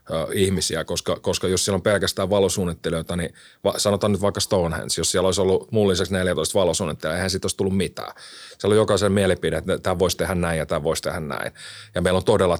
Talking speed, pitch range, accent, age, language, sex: 215 wpm, 85-100 Hz, native, 30-49, Finnish, male